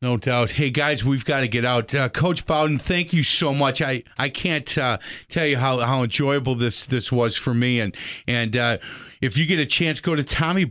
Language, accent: English, American